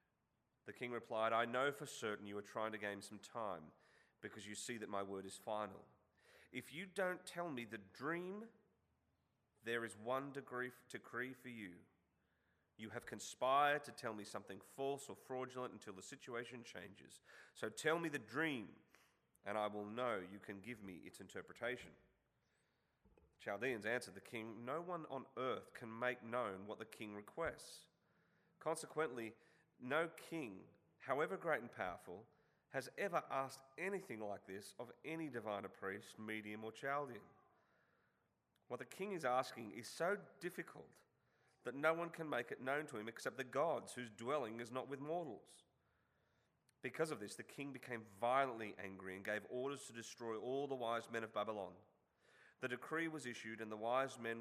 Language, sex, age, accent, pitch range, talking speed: English, male, 30-49, Australian, 105-140 Hz, 170 wpm